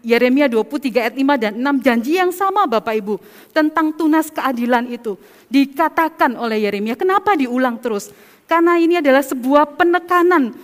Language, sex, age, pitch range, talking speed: Indonesian, female, 40-59, 265-355 Hz, 135 wpm